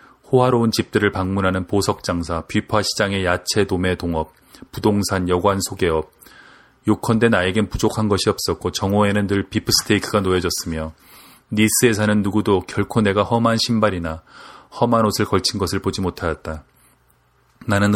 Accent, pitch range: native, 90-110 Hz